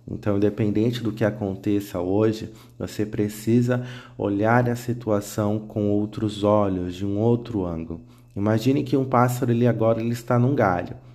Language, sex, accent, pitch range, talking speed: Portuguese, male, Brazilian, 100-120 Hz, 150 wpm